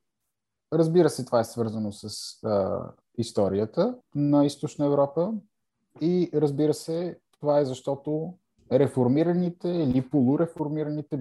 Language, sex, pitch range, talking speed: Bulgarian, male, 110-150 Hz, 100 wpm